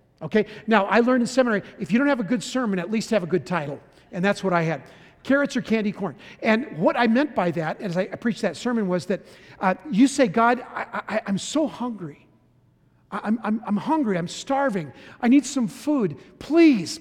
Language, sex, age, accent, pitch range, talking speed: English, male, 50-69, American, 190-240 Hz, 210 wpm